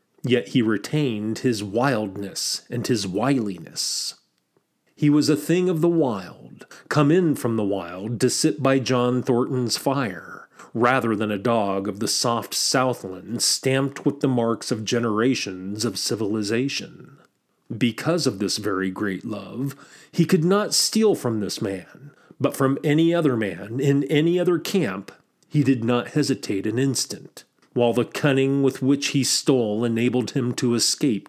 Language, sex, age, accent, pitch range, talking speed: English, male, 40-59, American, 115-150 Hz, 155 wpm